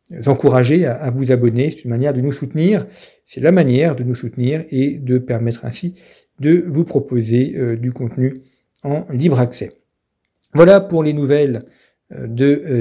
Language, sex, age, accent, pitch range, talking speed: French, male, 50-69, French, 120-145 Hz, 155 wpm